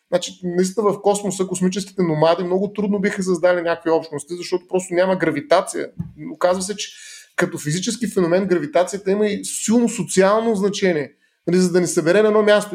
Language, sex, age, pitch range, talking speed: Bulgarian, male, 30-49, 160-195 Hz, 165 wpm